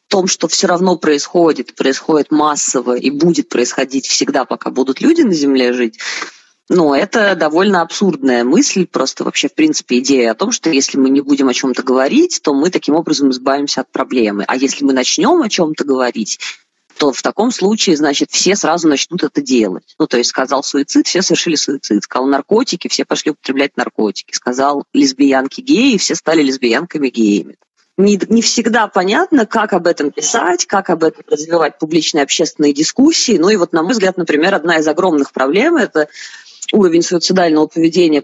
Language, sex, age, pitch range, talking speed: Russian, female, 20-39, 140-200 Hz, 175 wpm